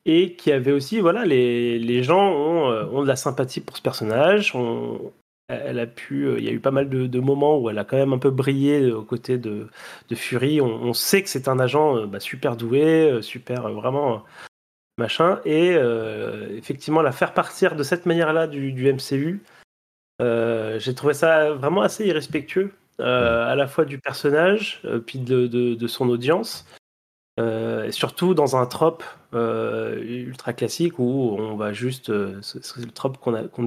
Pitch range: 115-150 Hz